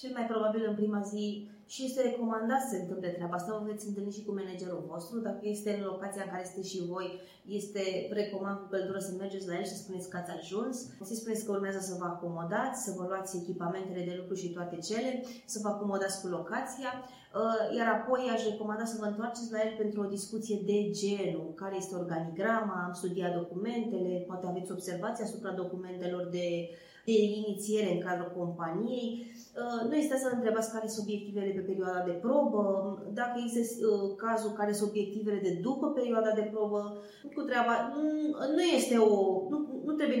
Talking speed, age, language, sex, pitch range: 195 wpm, 20-39, Romanian, female, 190-245 Hz